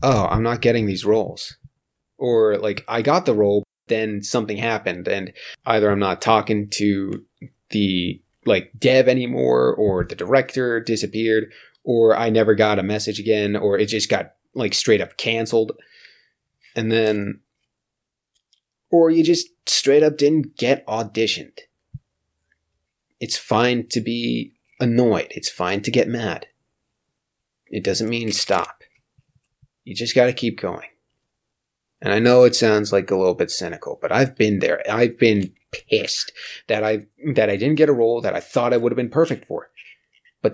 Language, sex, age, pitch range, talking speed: English, male, 30-49, 105-130 Hz, 160 wpm